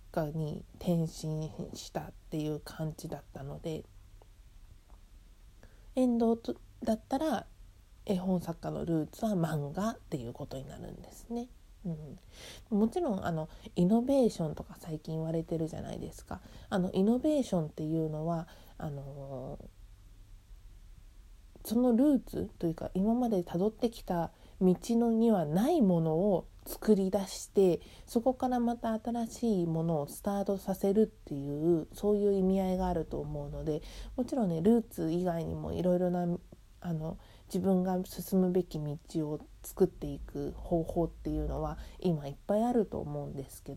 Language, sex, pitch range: Japanese, female, 145-205 Hz